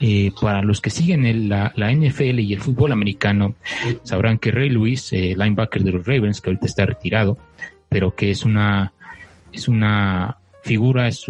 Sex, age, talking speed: male, 30-49, 175 wpm